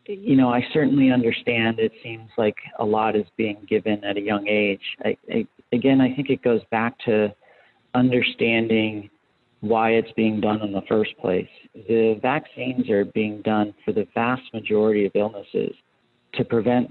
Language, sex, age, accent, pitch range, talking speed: English, male, 40-59, American, 105-120 Hz, 165 wpm